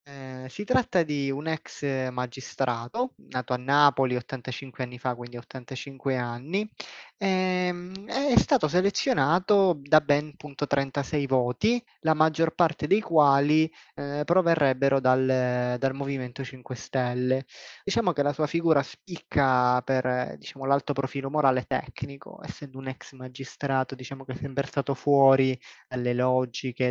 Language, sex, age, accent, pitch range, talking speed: Italian, male, 20-39, native, 130-150 Hz, 130 wpm